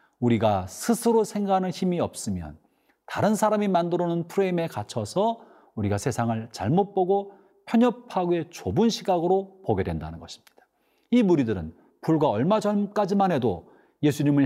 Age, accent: 40-59, native